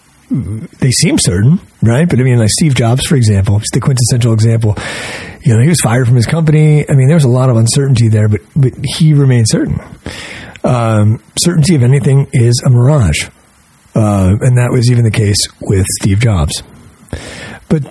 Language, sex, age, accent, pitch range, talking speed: English, male, 40-59, American, 110-135 Hz, 190 wpm